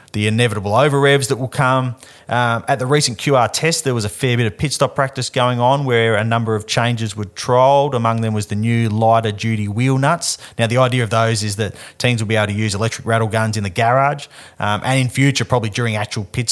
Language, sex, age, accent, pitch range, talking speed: English, male, 30-49, Australian, 105-125 Hz, 240 wpm